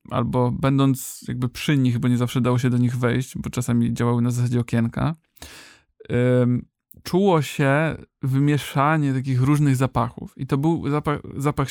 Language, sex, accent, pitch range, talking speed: Polish, male, native, 130-155 Hz, 160 wpm